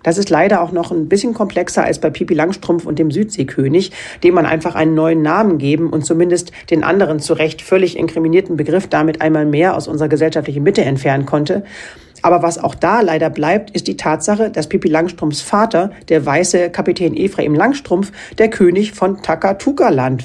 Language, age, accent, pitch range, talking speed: German, 40-59, German, 155-190 Hz, 185 wpm